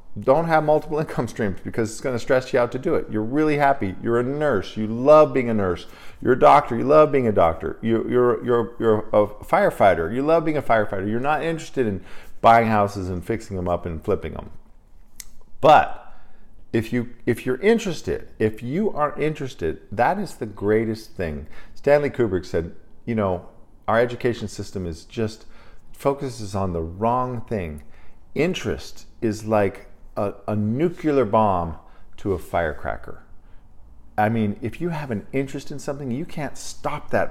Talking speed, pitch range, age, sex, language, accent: 180 wpm, 95-130 Hz, 50-69, male, English, American